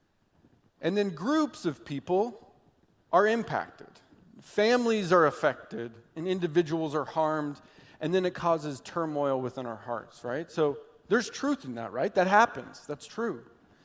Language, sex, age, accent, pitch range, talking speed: English, male, 40-59, American, 150-210 Hz, 145 wpm